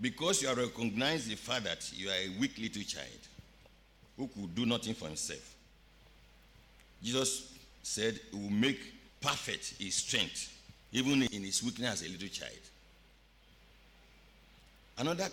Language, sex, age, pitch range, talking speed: English, male, 60-79, 115-155 Hz, 140 wpm